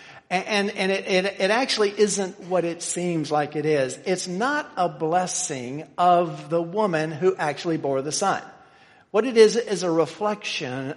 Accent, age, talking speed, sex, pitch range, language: American, 50-69, 170 wpm, male, 160-205 Hz, English